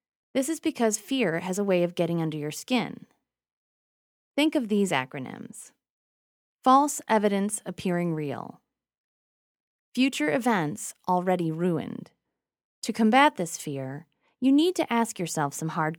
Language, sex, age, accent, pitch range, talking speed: English, female, 30-49, American, 175-260 Hz, 130 wpm